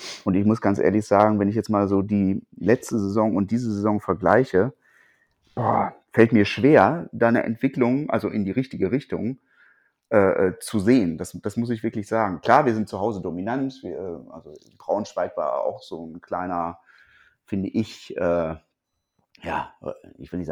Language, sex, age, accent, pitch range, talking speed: German, male, 30-49, German, 95-125 Hz, 175 wpm